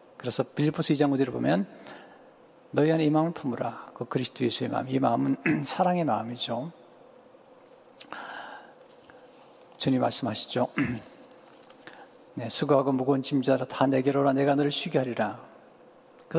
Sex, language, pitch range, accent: male, Japanese, 130-175 Hz, Korean